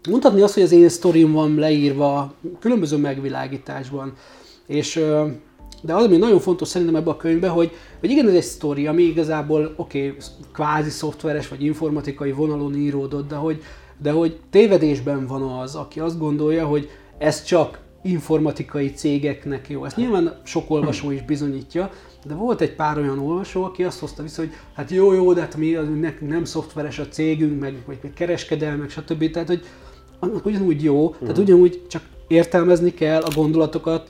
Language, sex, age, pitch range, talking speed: Hungarian, male, 30-49, 145-165 Hz, 170 wpm